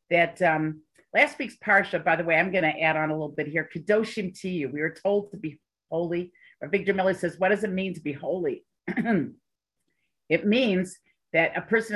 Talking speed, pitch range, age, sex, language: 210 wpm, 155-205 Hz, 50-69, female, English